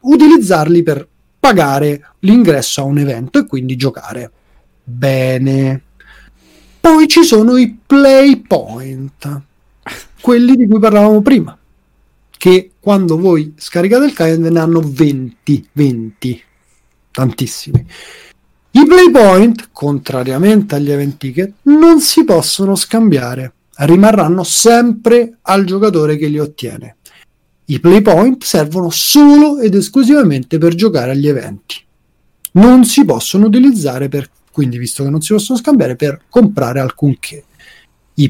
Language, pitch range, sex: Italian, 140-220 Hz, male